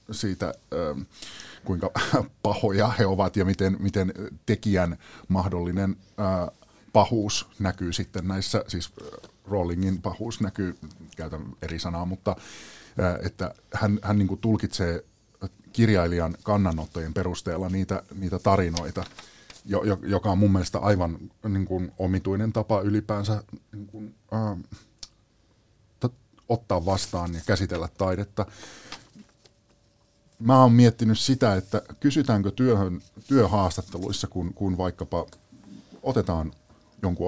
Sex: male